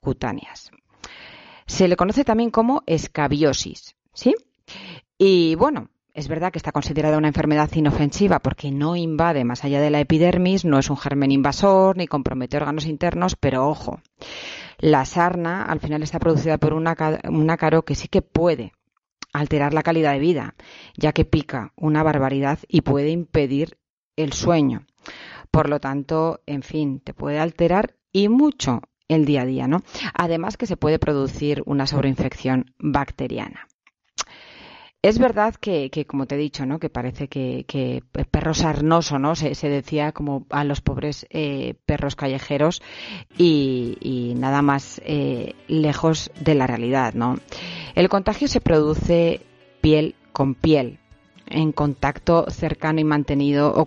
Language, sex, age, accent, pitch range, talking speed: Spanish, female, 40-59, Spanish, 140-160 Hz, 155 wpm